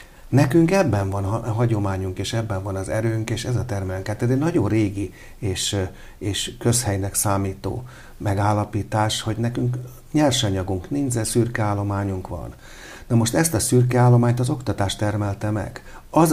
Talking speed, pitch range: 150 wpm, 100-120 Hz